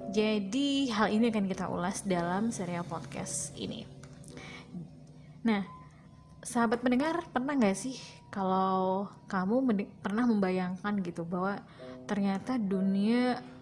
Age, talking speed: 20-39, 105 wpm